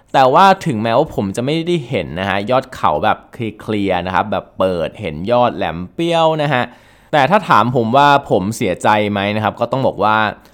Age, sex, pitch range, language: 20-39, male, 95-130 Hz, Thai